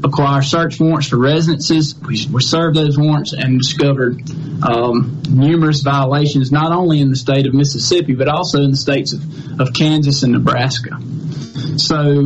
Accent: American